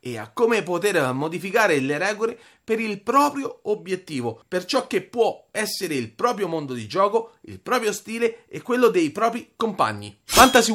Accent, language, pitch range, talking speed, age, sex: native, Italian, 185-255 Hz, 165 wpm, 30-49, male